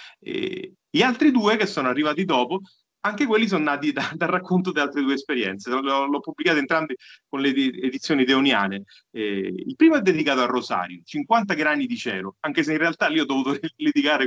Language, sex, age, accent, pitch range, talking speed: Italian, male, 30-49, native, 130-205 Hz, 195 wpm